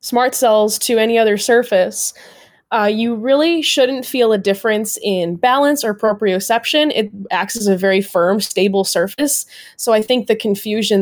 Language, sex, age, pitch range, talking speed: English, female, 20-39, 195-235 Hz, 165 wpm